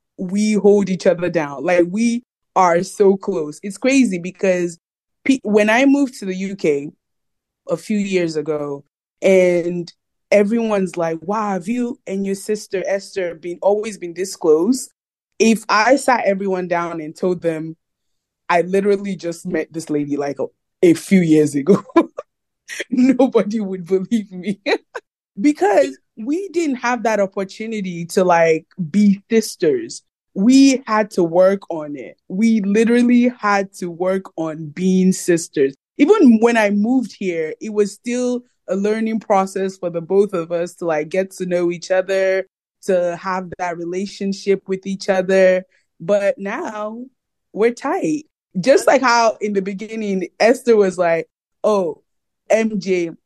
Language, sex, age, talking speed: English, female, 20-39, 150 wpm